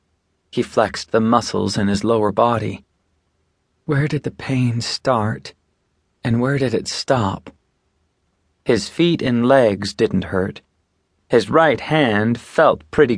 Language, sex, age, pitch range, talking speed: English, male, 30-49, 95-130 Hz, 130 wpm